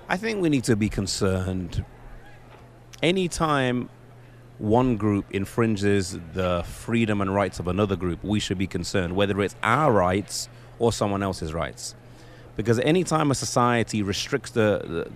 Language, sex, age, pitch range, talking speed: English, male, 30-49, 100-125 Hz, 145 wpm